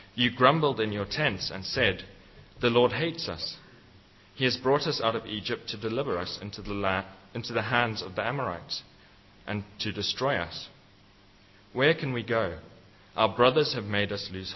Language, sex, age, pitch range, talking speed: English, male, 40-59, 100-125 Hz, 175 wpm